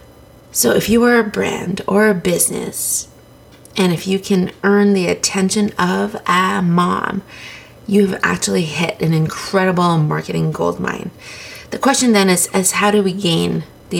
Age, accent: 30-49, American